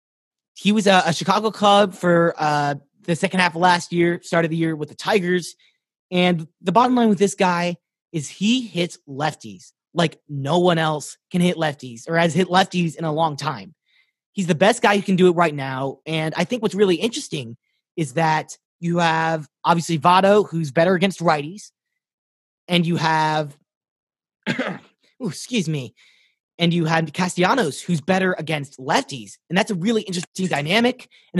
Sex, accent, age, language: male, American, 30-49, English